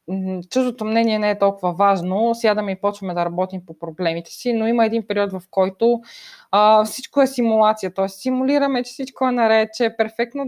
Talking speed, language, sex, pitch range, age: 190 wpm, Bulgarian, female, 175-220 Hz, 20-39